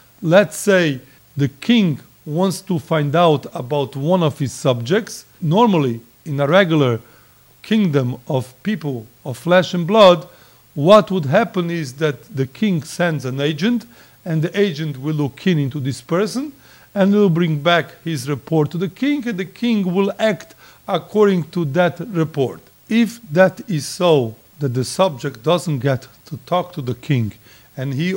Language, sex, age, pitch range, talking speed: English, male, 40-59, 140-185 Hz, 165 wpm